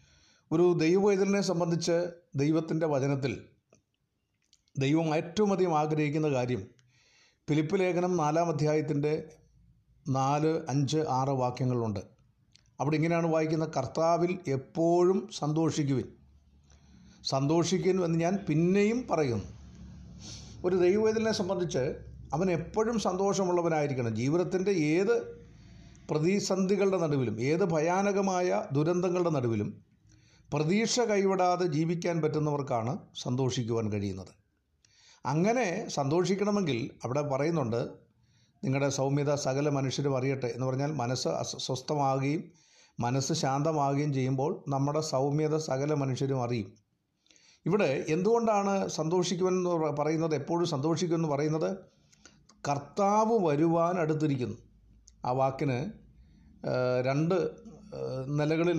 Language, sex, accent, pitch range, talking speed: Malayalam, male, native, 130-175 Hz, 85 wpm